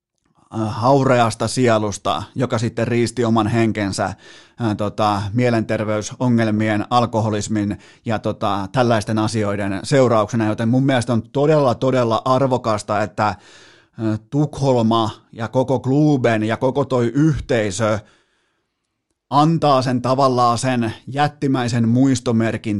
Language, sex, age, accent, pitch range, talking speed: Finnish, male, 30-49, native, 110-135 Hz, 90 wpm